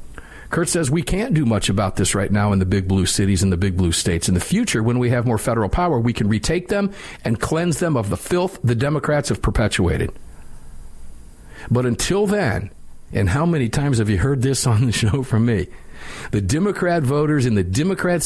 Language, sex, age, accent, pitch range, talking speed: English, male, 50-69, American, 105-160 Hz, 215 wpm